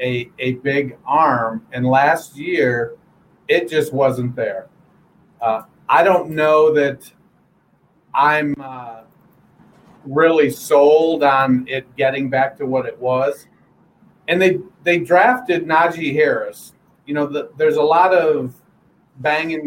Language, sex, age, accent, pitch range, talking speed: English, male, 40-59, American, 135-180 Hz, 130 wpm